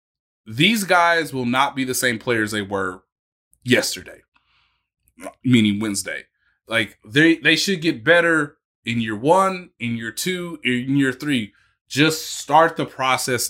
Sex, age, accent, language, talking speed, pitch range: male, 20-39, American, English, 140 wpm, 110-145 Hz